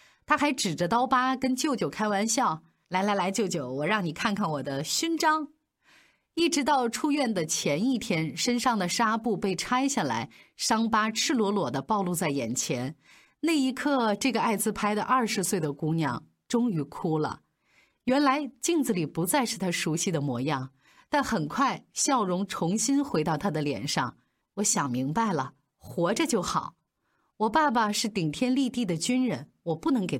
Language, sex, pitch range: Chinese, female, 160-255 Hz